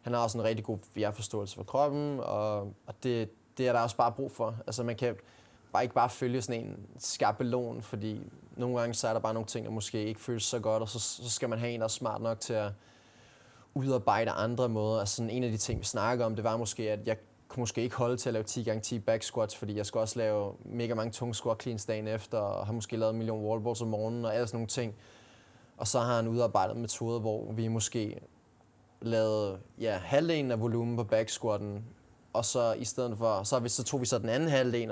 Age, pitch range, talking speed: 20-39, 110-125 Hz, 230 wpm